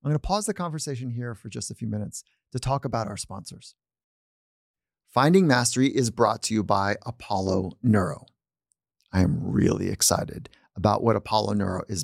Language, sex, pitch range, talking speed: English, male, 105-135 Hz, 175 wpm